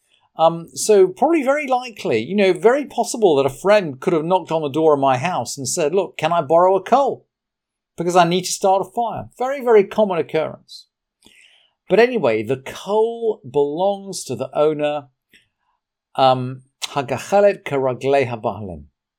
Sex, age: male, 50-69